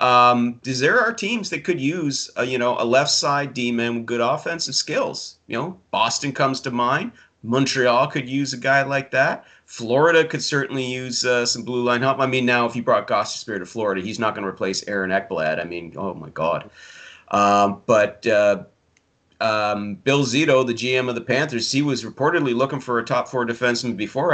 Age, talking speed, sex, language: 40-59, 205 wpm, male, English